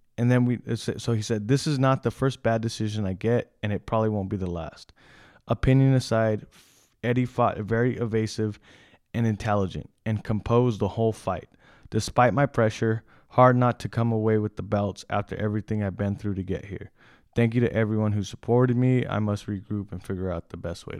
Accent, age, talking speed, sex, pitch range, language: American, 20-39, 200 wpm, male, 100-125 Hz, English